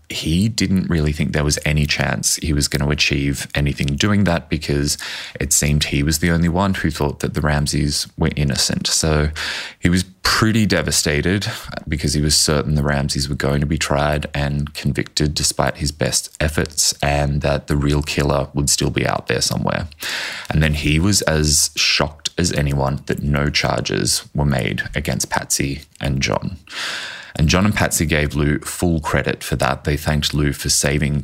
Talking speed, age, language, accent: 185 wpm, 20-39, English, Australian